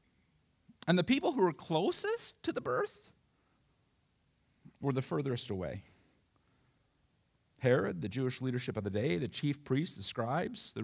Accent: American